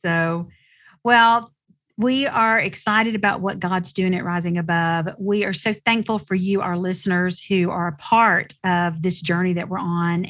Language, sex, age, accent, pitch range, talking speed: English, female, 40-59, American, 180-215 Hz, 175 wpm